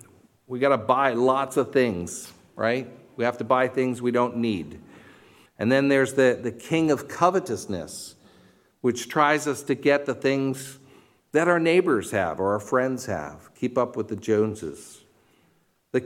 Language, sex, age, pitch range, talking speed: English, male, 50-69, 125-170 Hz, 170 wpm